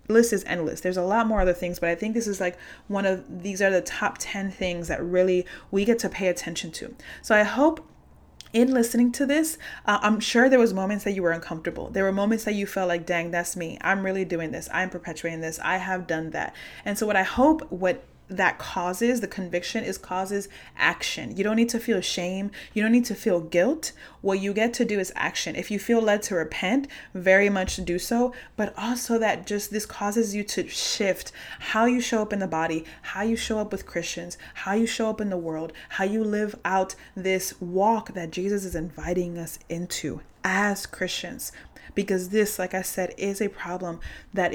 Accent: American